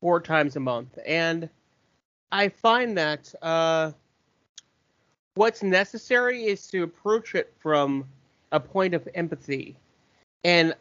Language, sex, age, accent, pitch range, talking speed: English, male, 30-49, American, 150-200 Hz, 115 wpm